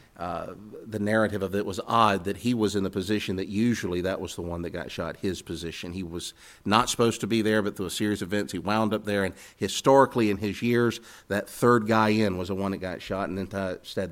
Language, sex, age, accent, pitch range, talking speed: English, male, 50-69, American, 95-110 Hz, 250 wpm